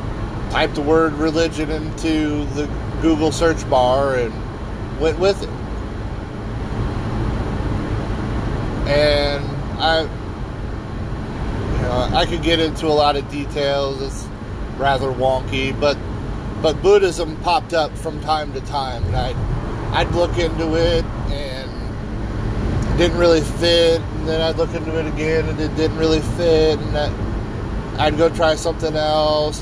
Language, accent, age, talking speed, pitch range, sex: English, American, 30-49, 135 wpm, 110-155 Hz, male